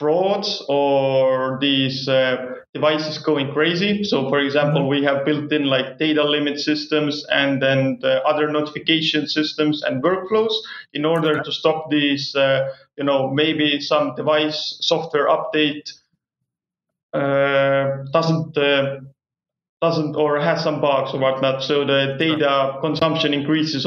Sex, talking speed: male, 135 wpm